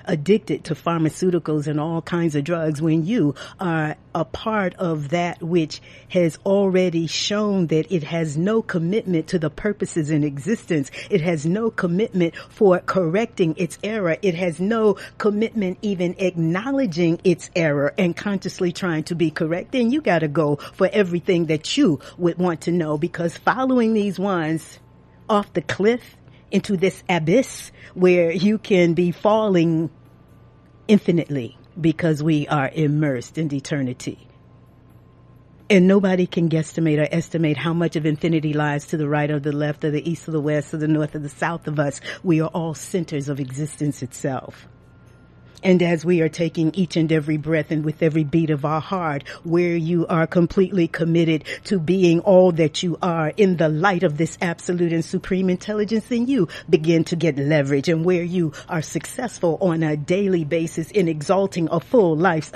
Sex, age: female, 50-69